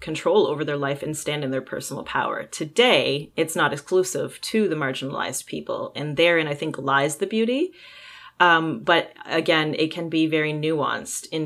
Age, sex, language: 30-49, female, English